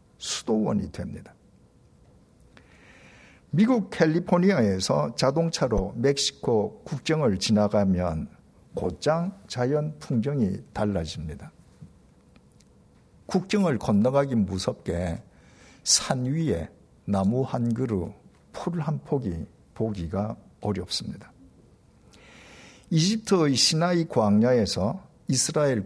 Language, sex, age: Korean, male, 50-69